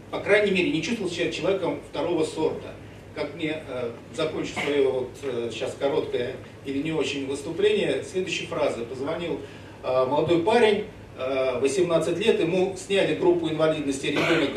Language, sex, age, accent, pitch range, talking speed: Russian, male, 40-59, native, 140-190 Hz, 130 wpm